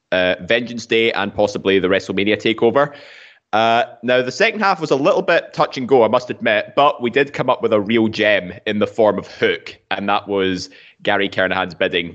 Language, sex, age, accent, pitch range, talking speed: English, male, 20-39, British, 100-115 Hz, 210 wpm